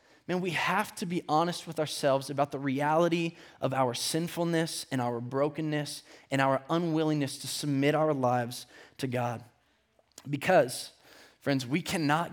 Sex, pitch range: male, 135-160 Hz